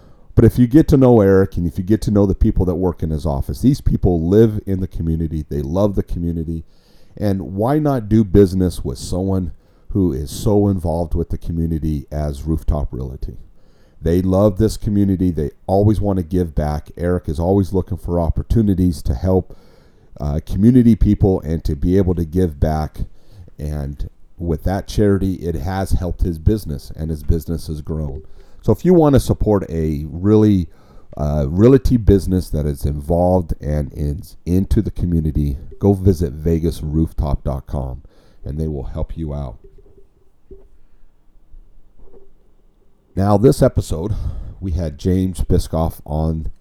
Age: 40-59